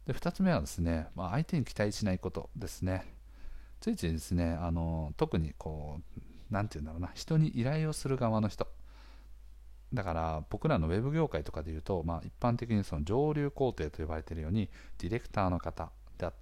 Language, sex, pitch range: Japanese, male, 80-120 Hz